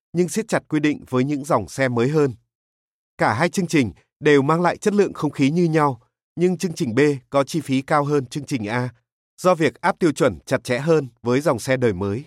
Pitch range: 130-165 Hz